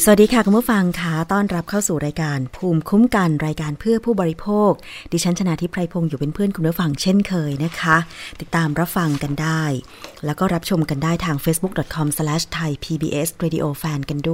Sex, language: female, Thai